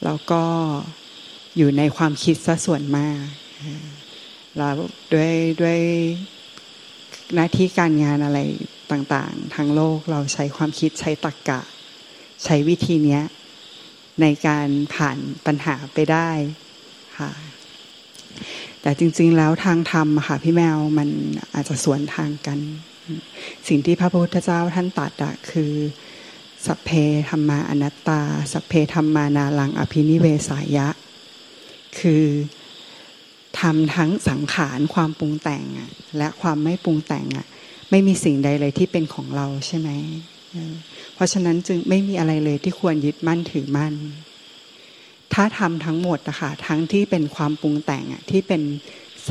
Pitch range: 145-165 Hz